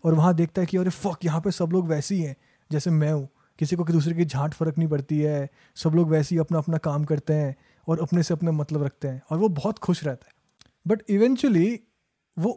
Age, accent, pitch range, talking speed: 20-39, native, 155-195 Hz, 250 wpm